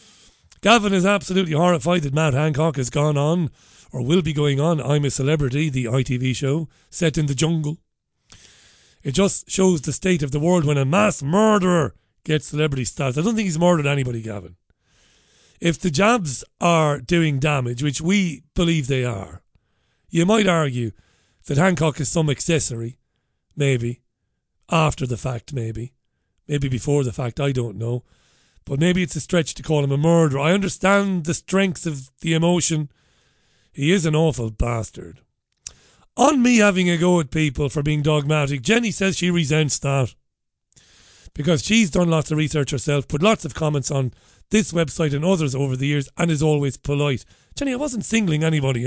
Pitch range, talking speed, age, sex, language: 135-175 Hz, 175 wpm, 40-59, male, English